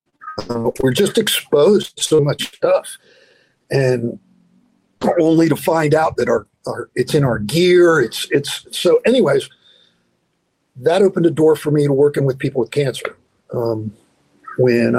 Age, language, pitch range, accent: 50-69, English, 125-185 Hz, American